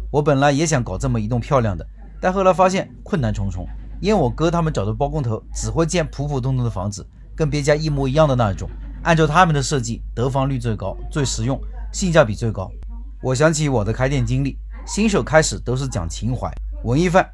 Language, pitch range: Chinese, 105-150 Hz